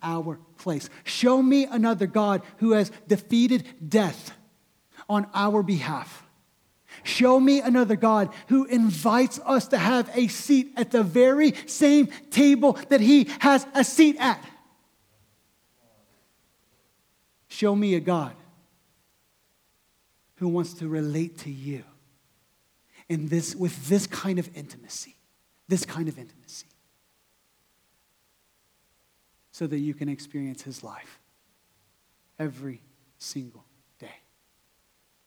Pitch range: 155-220 Hz